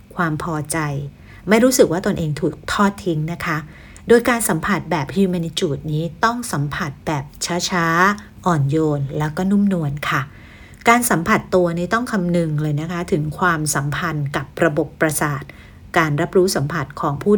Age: 60-79